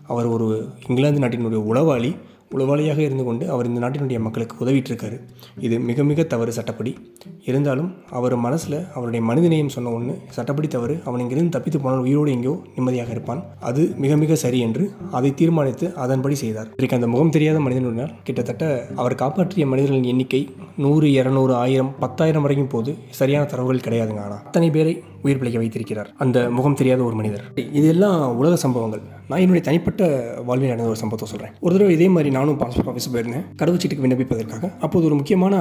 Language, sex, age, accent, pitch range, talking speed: Tamil, male, 20-39, native, 120-155 Hz, 165 wpm